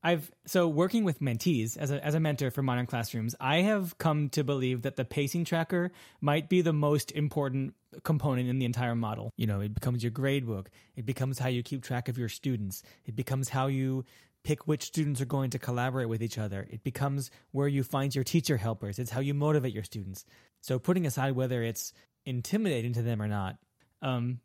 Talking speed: 215 wpm